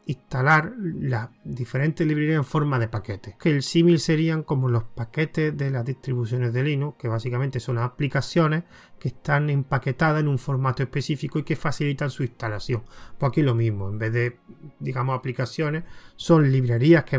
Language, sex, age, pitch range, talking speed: Spanish, male, 30-49, 125-155 Hz, 170 wpm